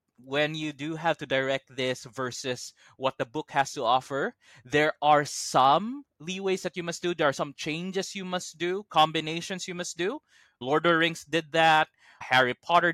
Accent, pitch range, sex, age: Filipino, 125-160 Hz, male, 20-39